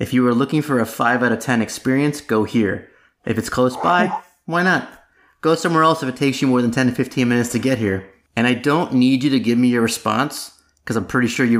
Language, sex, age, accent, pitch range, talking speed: English, male, 30-49, American, 110-135 Hz, 260 wpm